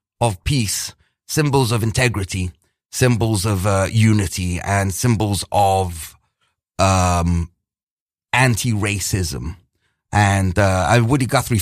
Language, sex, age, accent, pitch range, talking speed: English, male, 30-49, British, 95-130 Hz, 95 wpm